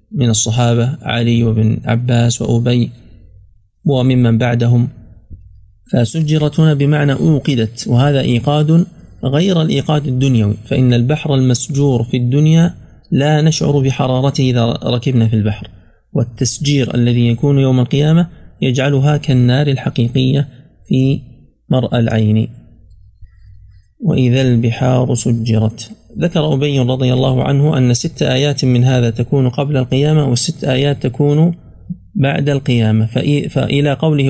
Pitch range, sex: 115-145 Hz, male